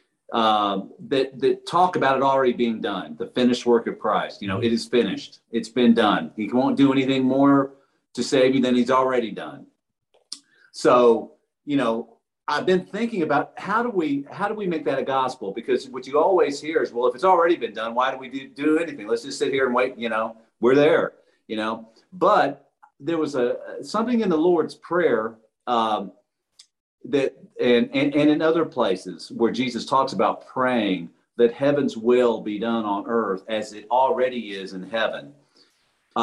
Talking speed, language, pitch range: 195 wpm, English, 115-150 Hz